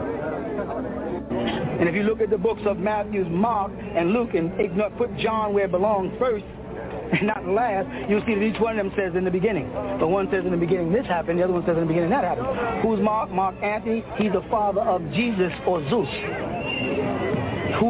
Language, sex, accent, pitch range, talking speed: English, male, American, 190-220 Hz, 210 wpm